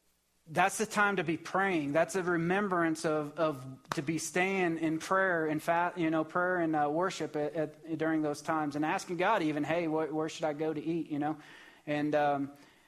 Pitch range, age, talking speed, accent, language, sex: 150-180 Hz, 30-49, 205 wpm, American, English, male